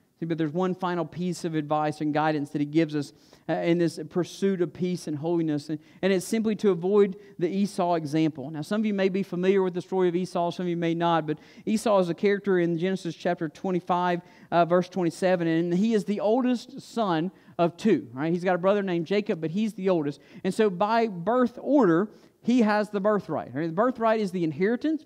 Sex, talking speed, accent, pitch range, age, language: male, 215 wpm, American, 175-225 Hz, 50-69, English